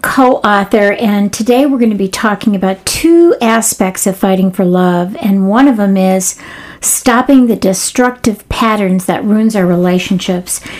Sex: female